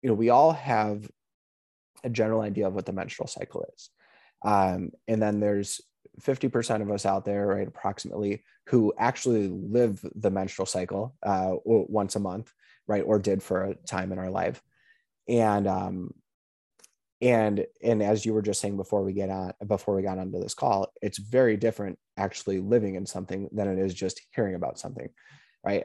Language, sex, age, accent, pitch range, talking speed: English, male, 20-39, American, 95-115 Hz, 180 wpm